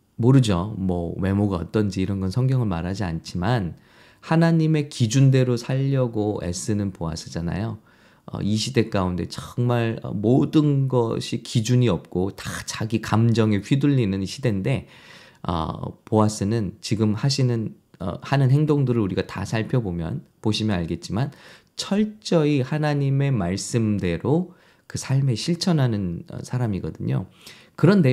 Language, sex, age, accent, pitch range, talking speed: English, male, 20-39, Korean, 105-140 Hz, 100 wpm